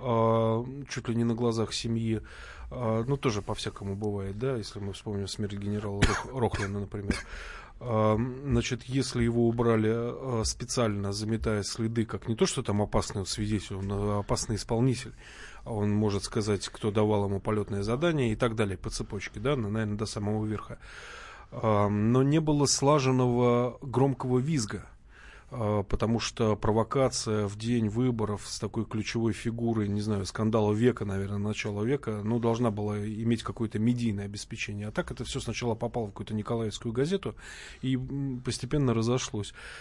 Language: Russian